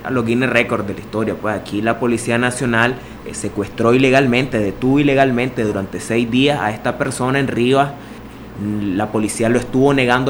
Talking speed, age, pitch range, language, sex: 165 wpm, 20-39, 105-125 Hz, English, male